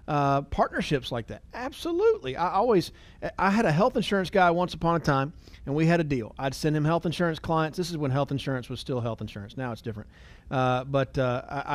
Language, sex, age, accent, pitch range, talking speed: English, male, 40-59, American, 130-190 Hz, 220 wpm